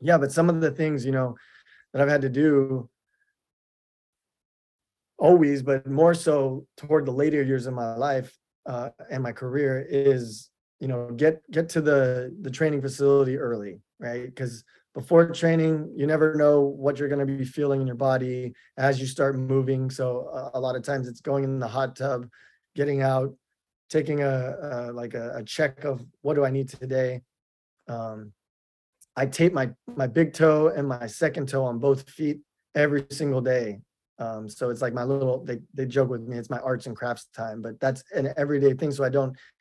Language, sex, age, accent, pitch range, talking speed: English, male, 20-39, American, 125-145 Hz, 195 wpm